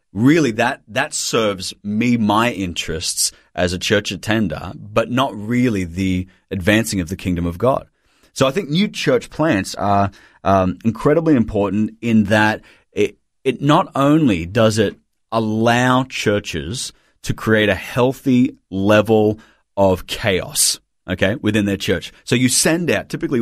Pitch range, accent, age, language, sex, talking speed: 95-125 Hz, Australian, 30-49, English, male, 145 wpm